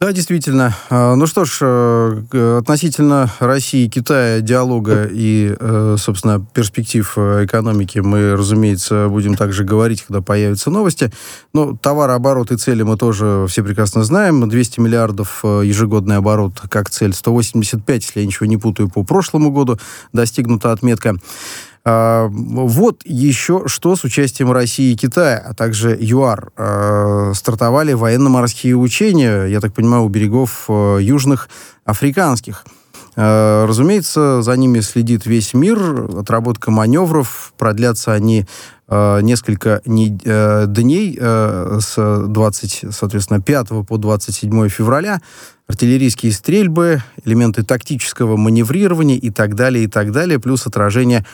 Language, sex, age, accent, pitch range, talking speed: Russian, male, 20-39, native, 105-130 Hz, 115 wpm